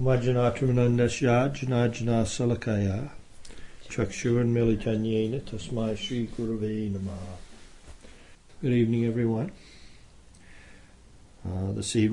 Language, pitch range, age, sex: English, 100-120 Hz, 60-79, male